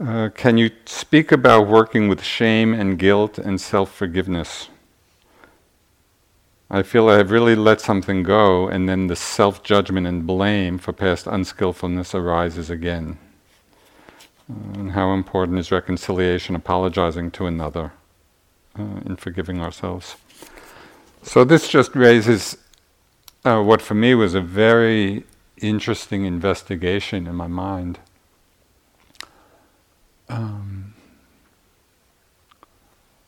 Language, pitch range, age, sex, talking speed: English, 90-105 Hz, 50-69, male, 110 wpm